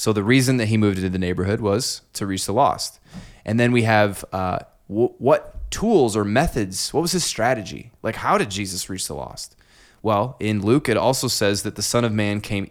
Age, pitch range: 20-39, 100-120 Hz